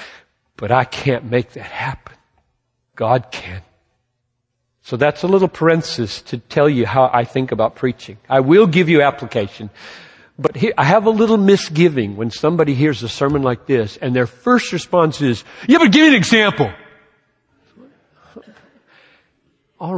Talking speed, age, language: 155 wpm, 50-69, English